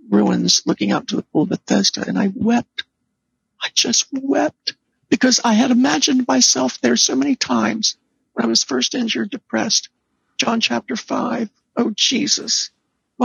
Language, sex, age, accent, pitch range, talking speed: English, male, 60-79, American, 145-235 Hz, 160 wpm